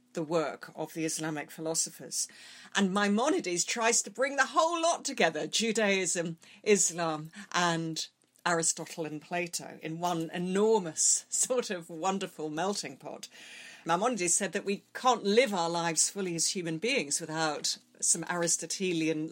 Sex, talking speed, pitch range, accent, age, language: female, 135 wpm, 160-205 Hz, British, 40-59, English